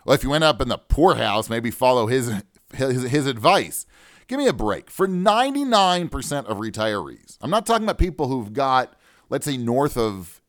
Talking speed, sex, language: 190 wpm, male, English